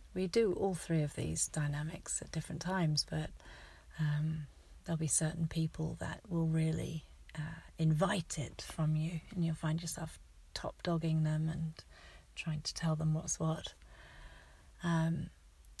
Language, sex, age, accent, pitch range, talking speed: English, female, 40-59, British, 155-175 Hz, 145 wpm